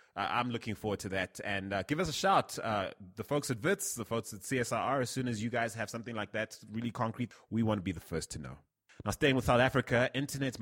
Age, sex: 30-49, male